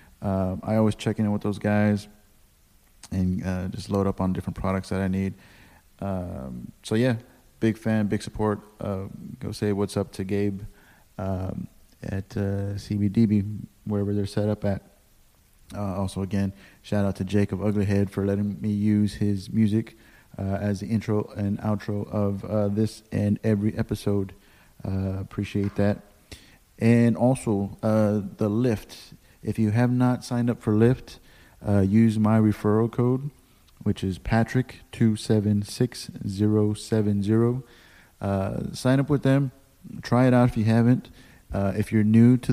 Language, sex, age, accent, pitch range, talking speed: English, male, 30-49, American, 100-110 Hz, 160 wpm